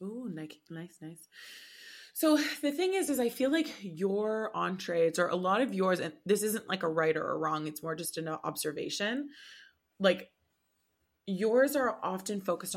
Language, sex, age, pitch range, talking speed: English, female, 20-39, 160-200 Hz, 175 wpm